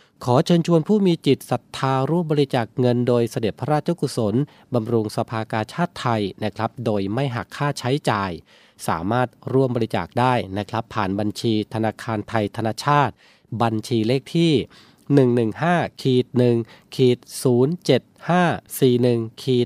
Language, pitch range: Thai, 110-135 Hz